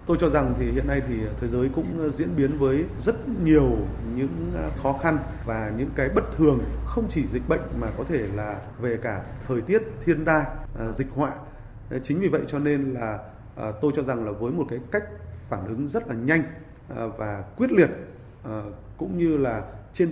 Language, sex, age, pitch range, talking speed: Vietnamese, male, 20-39, 115-150 Hz, 195 wpm